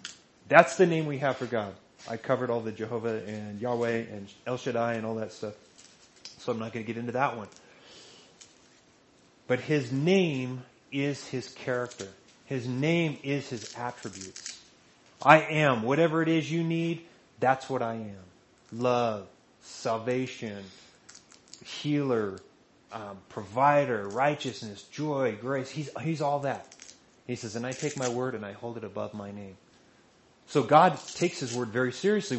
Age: 30-49